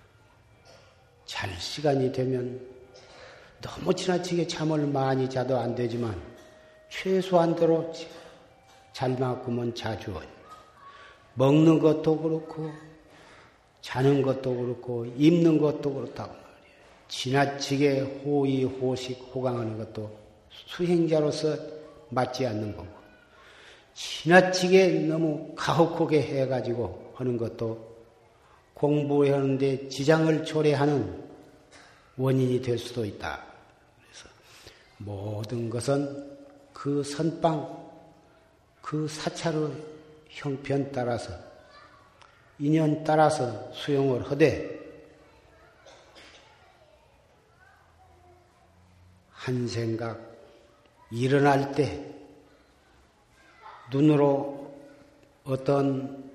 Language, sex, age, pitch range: Korean, male, 40-59, 120-155 Hz